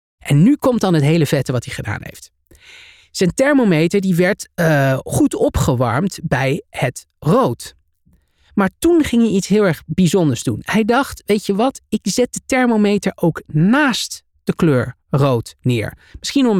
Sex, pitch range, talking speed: male, 150-225 Hz, 175 wpm